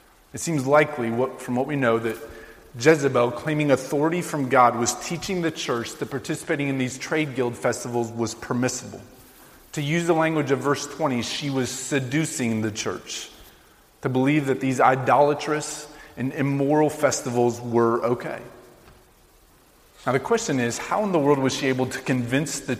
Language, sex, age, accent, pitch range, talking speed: English, male, 30-49, American, 125-150 Hz, 165 wpm